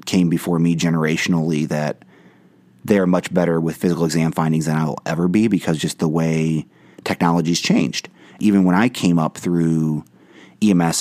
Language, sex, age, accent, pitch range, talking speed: English, male, 30-49, American, 80-95 Hz, 175 wpm